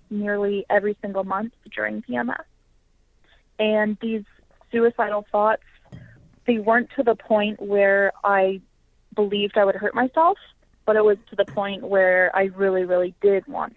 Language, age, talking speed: English, 20-39, 150 wpm